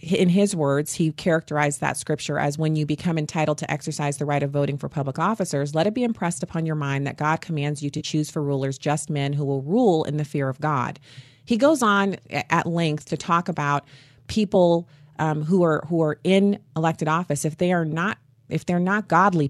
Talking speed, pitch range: 220 wpm, 145-175 Hz